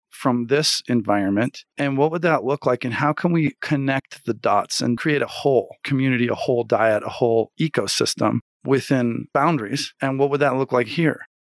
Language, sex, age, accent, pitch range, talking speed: English, male, 40-59, American, 115-145 Hz, 190 wpm